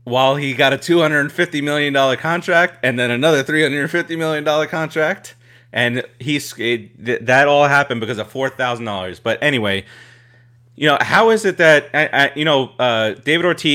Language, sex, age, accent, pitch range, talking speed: English, male, 30-49, American, 115-140 Hz, 200 wpm